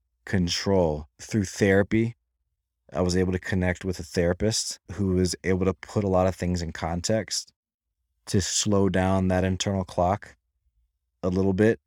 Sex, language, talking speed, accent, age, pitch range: male, English, 155 wpm, American, 20-39, 80-105 Hz